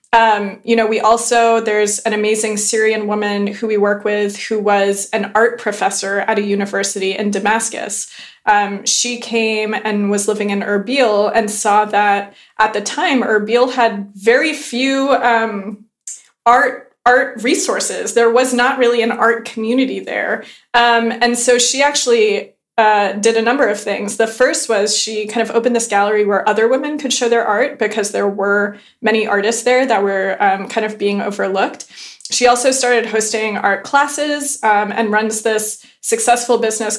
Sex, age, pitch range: female, 20-39, 210-245 Hz